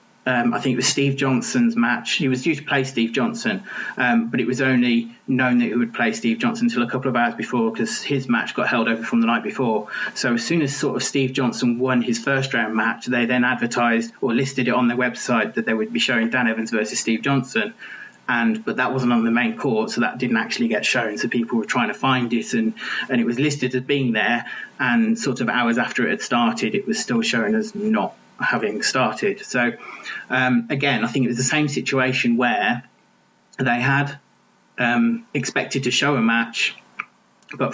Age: 30-49